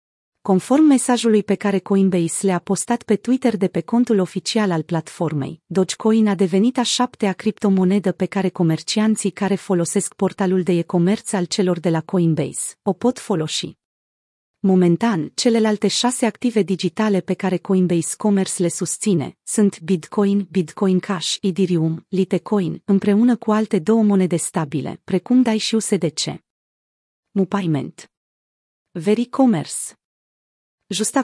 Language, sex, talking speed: Romanian, female, 130 wpm